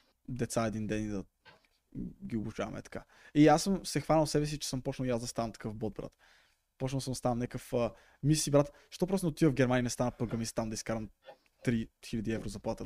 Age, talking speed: 20-39, 215 wpm